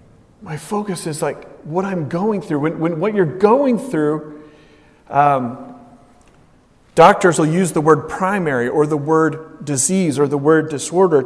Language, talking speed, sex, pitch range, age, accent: English, 155 wpm, male, 145-210 Hz, 40-59, American